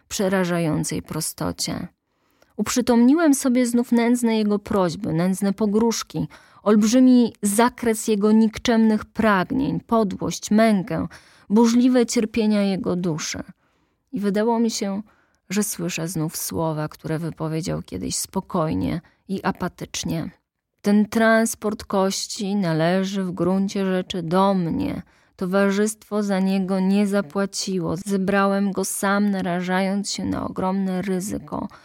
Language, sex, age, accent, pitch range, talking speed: Polish, female, 20-39, native, 190-230 Hz, 105 wpm